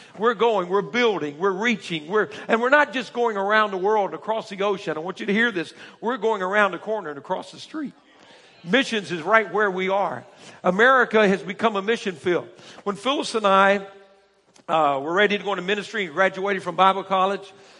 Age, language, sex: 60-79, English, male